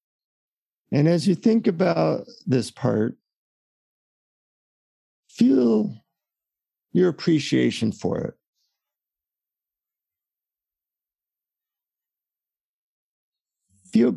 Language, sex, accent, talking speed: English, male, American, 55 wpm